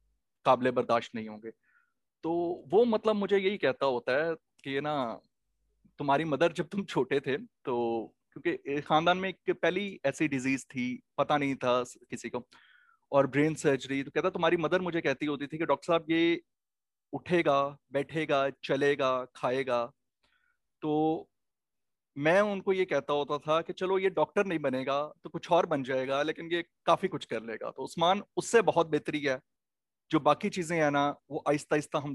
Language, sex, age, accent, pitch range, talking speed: English, male, 30-49, Indian, 135-170 Hz, 165 wpm